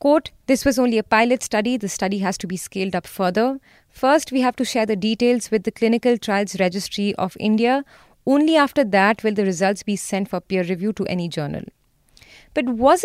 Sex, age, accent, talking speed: female, 30-49, Indian, 205 wpm